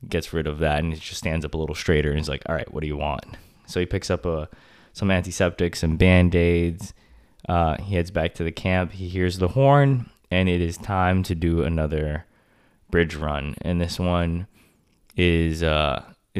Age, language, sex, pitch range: 20-39, English, male, 80-90 Hz